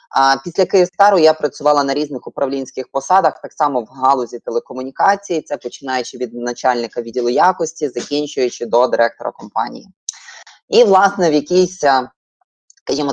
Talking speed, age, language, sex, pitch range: 135 wpm, 20-39, Ukrainian, female, 135-180 Hz